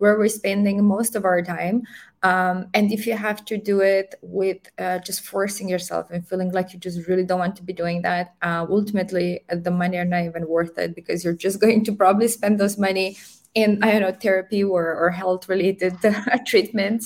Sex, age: female, 20-39